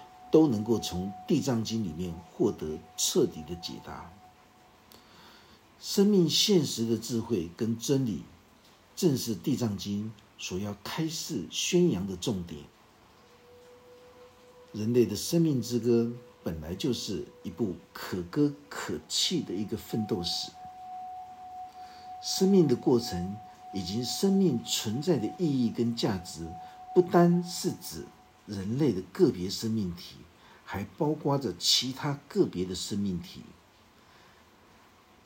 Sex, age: male, 50-69